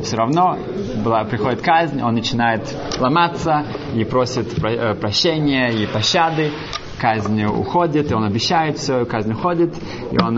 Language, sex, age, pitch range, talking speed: Russian, male, 20-39, 115-150 Hz, 150 wpm